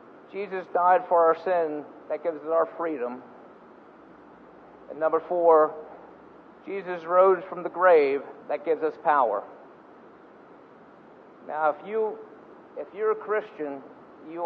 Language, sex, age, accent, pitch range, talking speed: English, male, 50-69, American, 150-185 Hz, 125 wpm